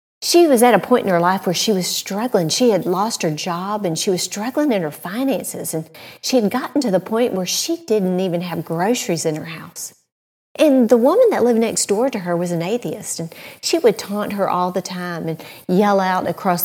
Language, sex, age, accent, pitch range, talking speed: English, female, 50-69, American, 185-250 Hz, 230 wpm